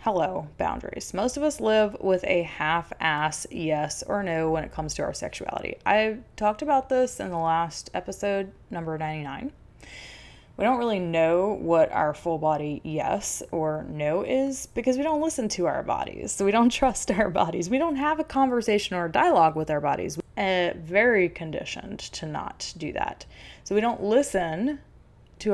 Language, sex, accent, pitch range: English, female, American, 165-220 Hz